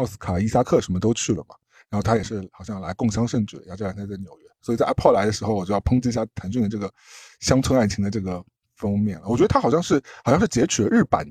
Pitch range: 100-130 Hz